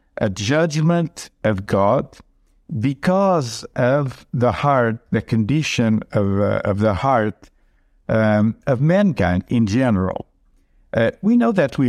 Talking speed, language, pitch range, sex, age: 125 wpm, English, 105-135 Hz, male, 60-79